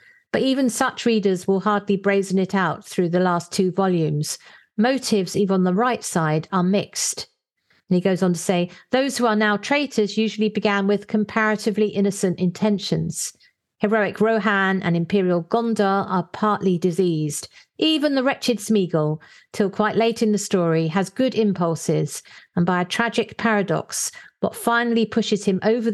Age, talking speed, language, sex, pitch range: 50-69, 160 wpm, English, female, 180-225 Hz